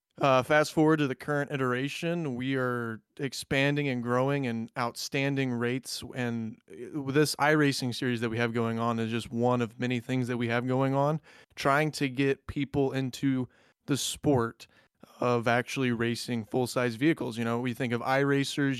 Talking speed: 170 wpm